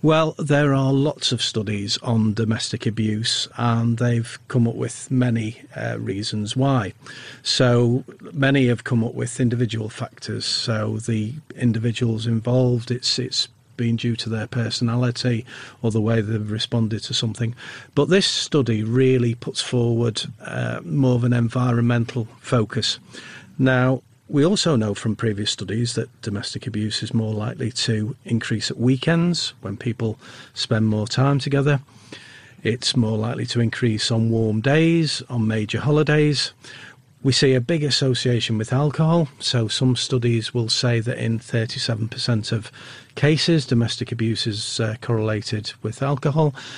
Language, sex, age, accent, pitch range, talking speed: English, male, 40-59, British, 115-135 Hz, 145 wpm